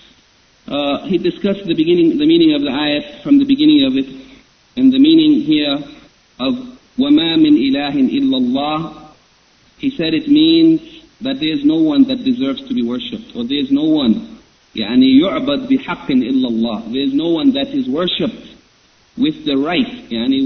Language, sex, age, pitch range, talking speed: English, male, 50-69, 205-295 Hz, 175 wpm